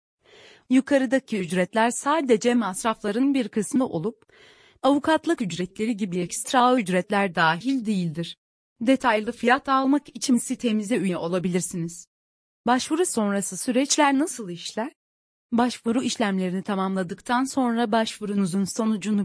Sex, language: female, Turkish